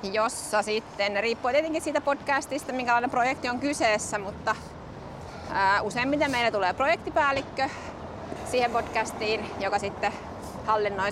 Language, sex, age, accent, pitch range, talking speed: Finnish, female, 30-49, native, 185-235 Hz, 115 wpm